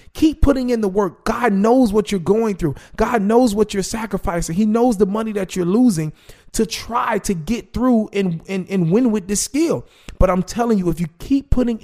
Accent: American